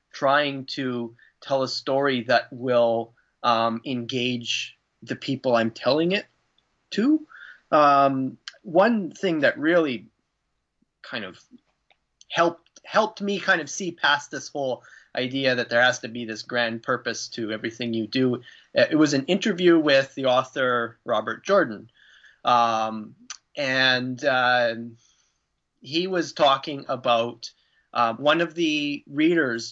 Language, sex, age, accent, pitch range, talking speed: English, male, 30-49, American, 120-145 Hz, 130 wpm